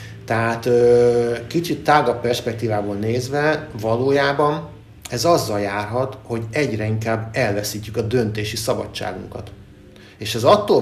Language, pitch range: Hungarian, 105-120 Hz